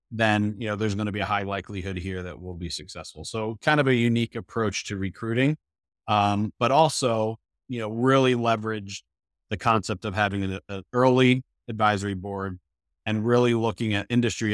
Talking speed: 180 wpm